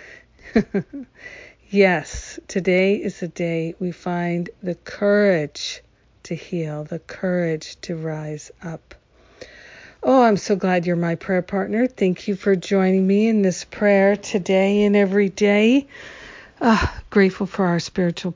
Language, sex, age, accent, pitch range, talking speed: English, female, 50-69, American, 175-210 Hz, 135 wpm